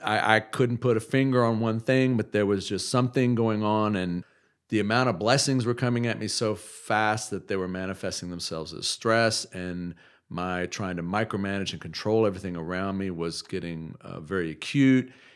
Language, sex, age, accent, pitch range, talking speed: English, male, 50-69, American, 90-110 Hz, 190 wpm